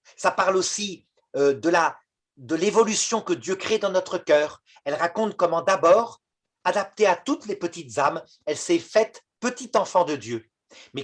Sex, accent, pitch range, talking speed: male, French, 150-210 Hz, 175 wpm